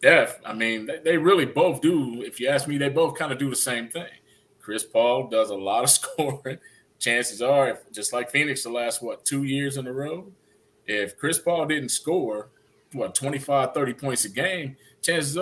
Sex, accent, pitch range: male, American, 120-145 Hz